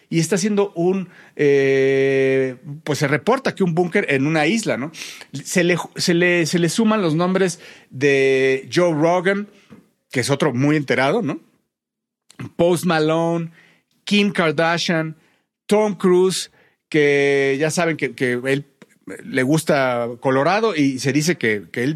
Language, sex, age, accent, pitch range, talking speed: Spanish, male, 40-59, Mexican, 145-185 Hz, 150 wpm